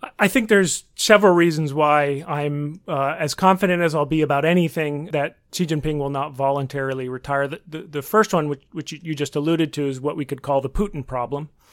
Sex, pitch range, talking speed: male, 140-170 Hz, 205 wpm